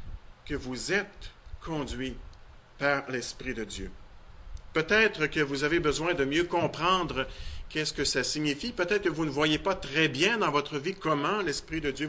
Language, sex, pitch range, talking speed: French, male, 120-170 Hz, 175 wpm